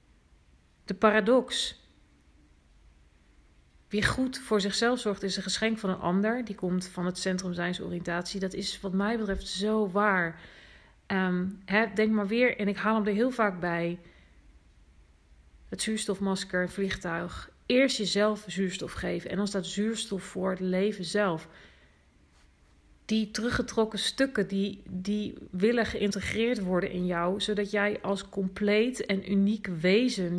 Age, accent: 40-59, Dutch